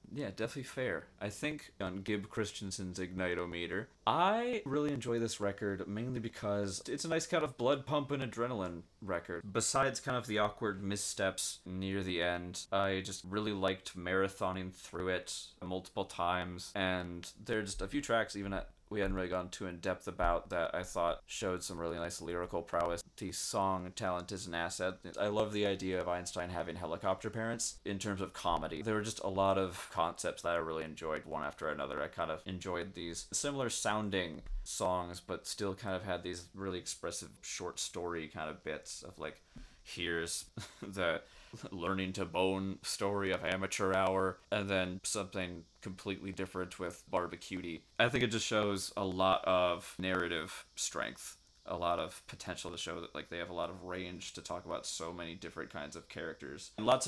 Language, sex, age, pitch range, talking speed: English, male, 20-39, 90-105 Hz, 185 wpm